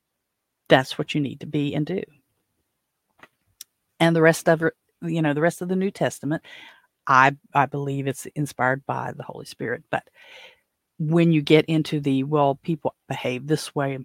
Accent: American